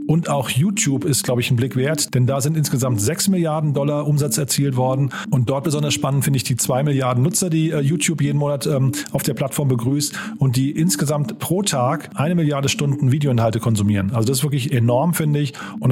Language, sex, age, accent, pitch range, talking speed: German, male, 40-59, German, 125-155 Hz, 205 wpm